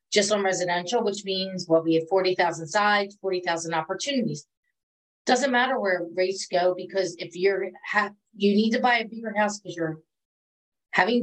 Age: 30-49